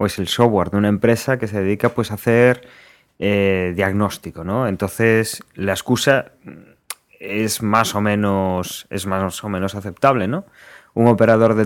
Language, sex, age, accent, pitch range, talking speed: English, male, 20-39, Spanish, 95-115 Hz, 165 wpm